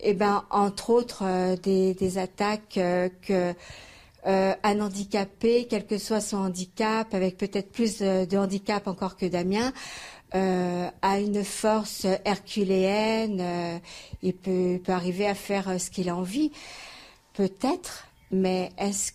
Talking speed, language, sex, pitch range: 145 wpm, French, female, 185-215 Hz